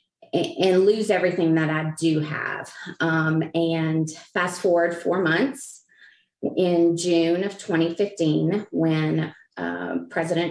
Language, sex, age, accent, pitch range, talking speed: English, female, 30-49, American, 160-185 Hz, 115 wpm